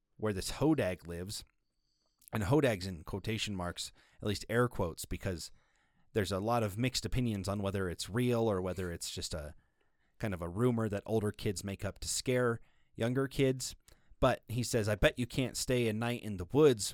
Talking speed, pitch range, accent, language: 195 wpm, 95-125 Hz, American, English